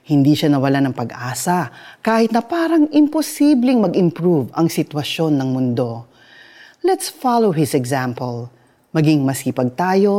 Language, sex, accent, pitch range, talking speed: Filipino, female, native, 140-225 Hz, 125 wpm